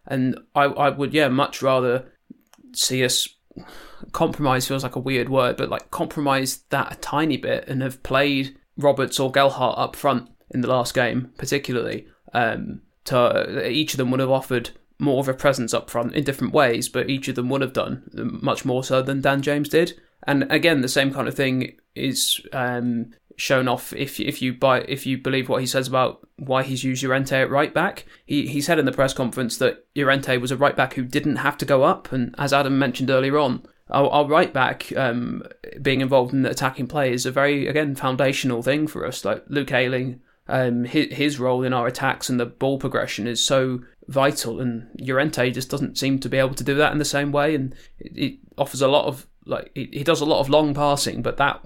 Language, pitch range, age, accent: English, 130-140 Hz, 20-39, British